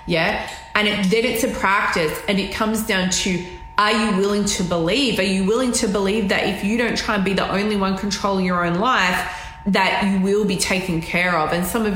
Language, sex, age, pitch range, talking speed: English, female, 20-39, 185-225 Hz, 225 wpm